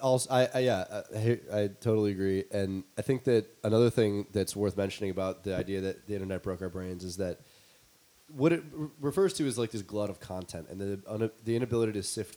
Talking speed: 220 wpm